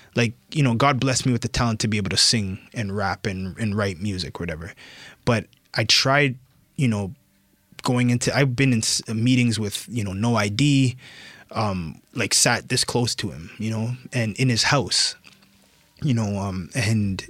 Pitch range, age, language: 105-125 Hz, 20-39, English